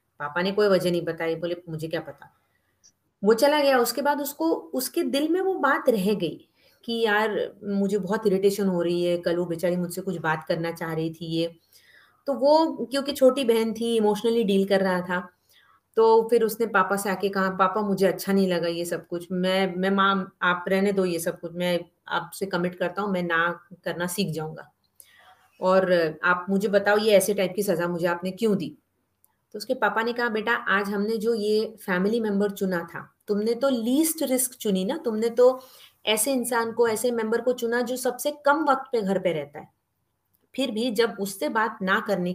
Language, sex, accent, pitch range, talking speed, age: Hindi, female, native, 175-235 Hz, 200 wpm, 30-49